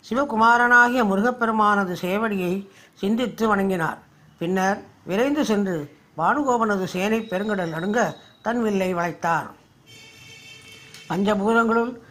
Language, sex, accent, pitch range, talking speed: Tamil, female, native, 175-220 Hz, 80 wpm